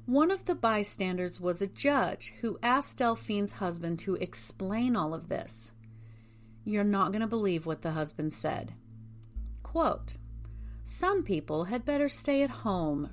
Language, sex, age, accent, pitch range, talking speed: English, female, 40-59, American, 155-205 Hz, 150 wpm